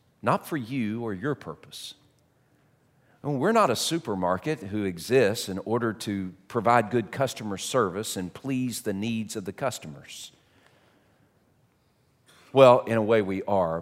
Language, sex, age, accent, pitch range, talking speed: English, male, 40-59, American, 100-135 Hz, 140 wpm